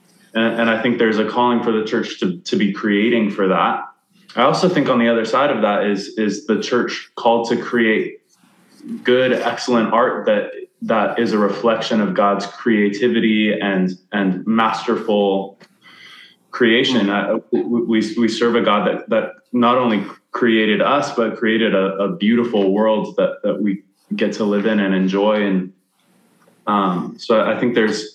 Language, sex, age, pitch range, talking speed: English, male, 20-39, 100-120 Hz, 165 wpm